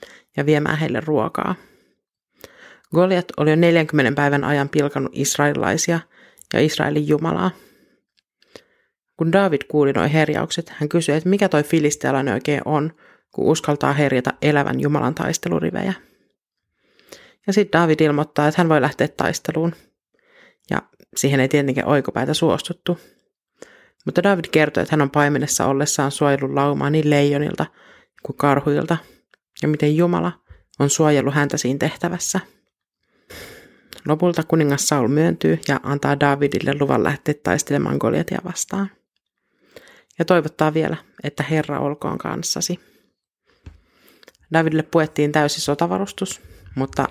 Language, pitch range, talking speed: Finnish, 140-165 Hz, 120 wpm